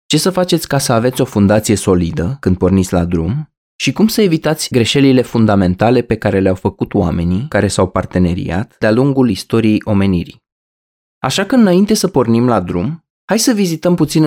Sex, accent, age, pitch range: male, native, 20-39, 100-135 Hz